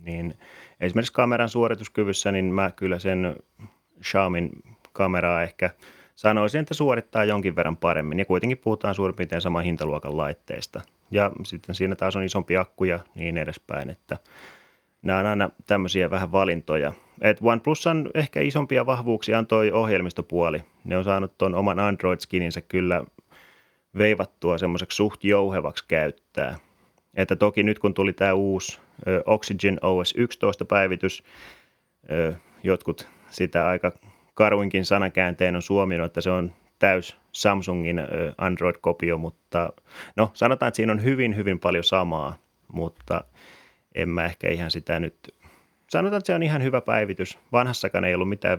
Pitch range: 90-105 Hz